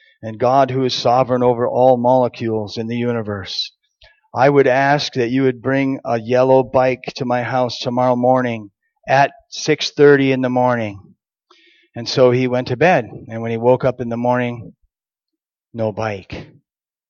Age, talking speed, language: 40-59, 165 wpm, English